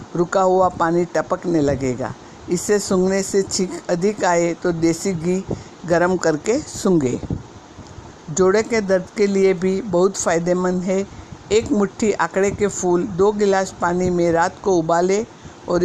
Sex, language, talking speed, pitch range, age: female, Hindi, 150 wpm, 170-200 Hz, 60-79